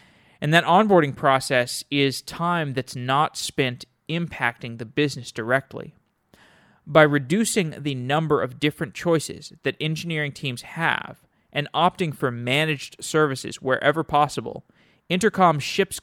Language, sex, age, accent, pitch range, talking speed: English, male, 30-49, American, 125-155 Hz, 125 wpm